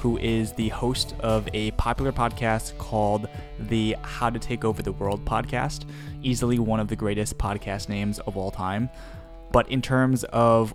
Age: 20-39